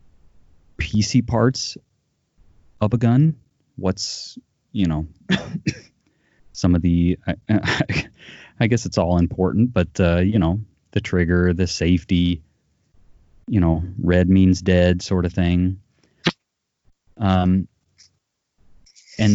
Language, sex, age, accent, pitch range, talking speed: English, male, 30-49, American, 85-105 Hz, 110 wpm